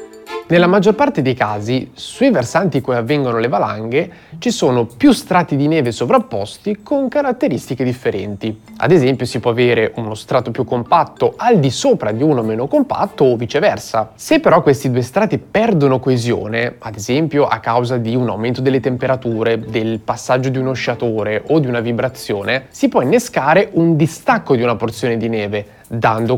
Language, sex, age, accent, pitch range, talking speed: Italian, male, 30-49, native, 120-175 Hz, 175 wpm